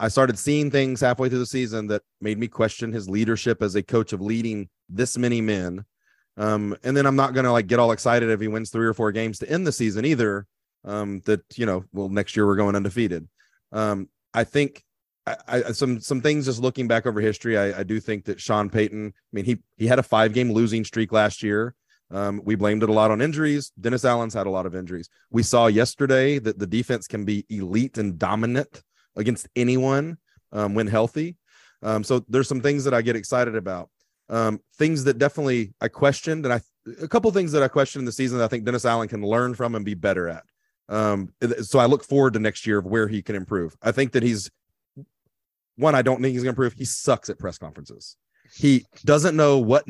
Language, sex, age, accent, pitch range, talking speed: English, male, 30-49, American, 105-135 Hz, 225 wpm